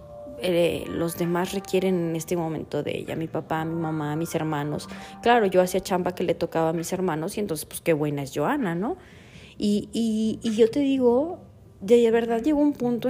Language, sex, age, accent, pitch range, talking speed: Spanish, female, 30-49, Mexican, 175-250 Hz, 200 wpm